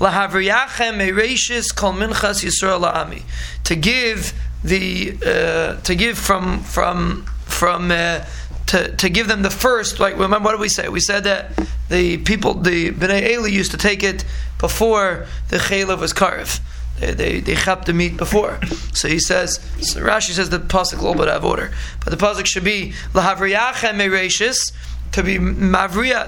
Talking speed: 150 wpm